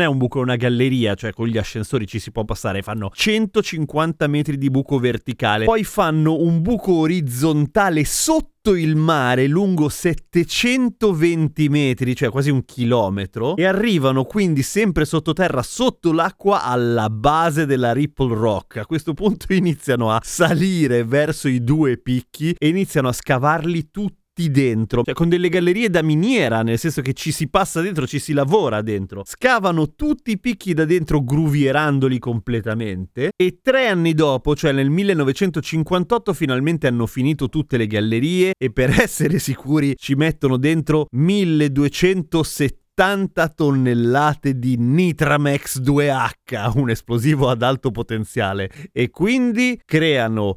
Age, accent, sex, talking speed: 30-49, native, male, 145 wpm